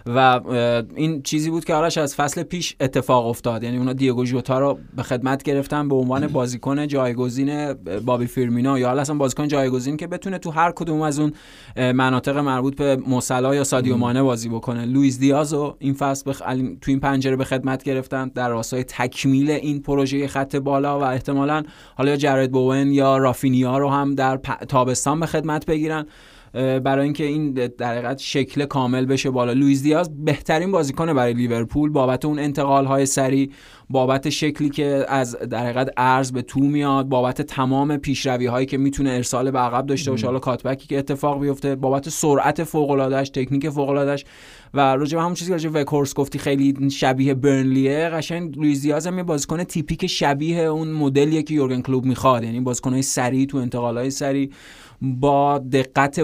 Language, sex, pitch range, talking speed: Persian, male, 130-145 Hz, 170 wpm